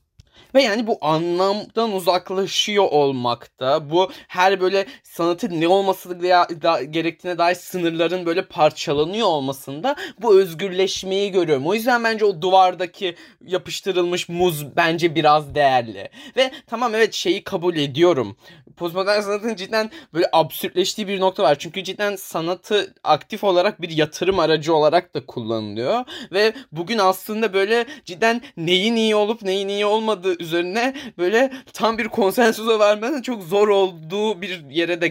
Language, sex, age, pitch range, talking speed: Turkish, male, 20-39, 155-205 Hz, 130 wpm